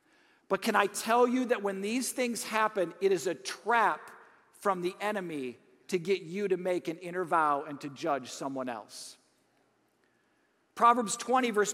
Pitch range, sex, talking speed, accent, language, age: 185-240 Hz, male, 170 wpm, American, English, 50-69